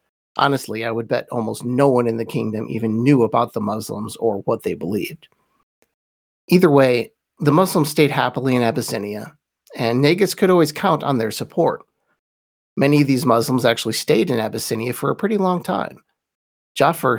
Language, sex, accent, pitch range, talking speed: English, male, American, 120-160 Hz, 170 wpm